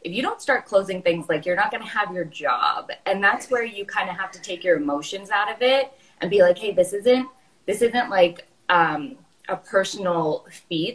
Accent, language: American, English